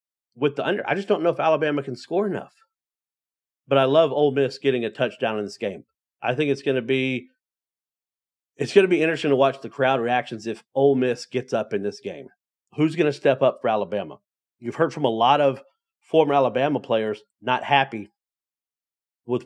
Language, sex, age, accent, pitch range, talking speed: English, male, 40-59, American, 125-155 Hz, 195 wpm